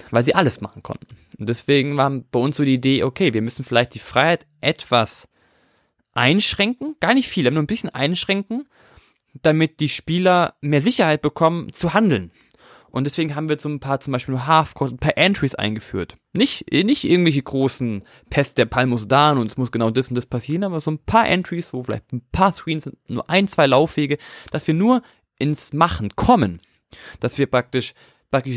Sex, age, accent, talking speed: male, 20-39, German, 195 wpm